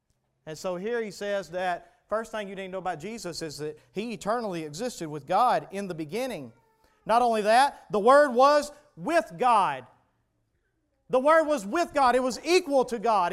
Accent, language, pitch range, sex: American, English, 210-275 Hz, male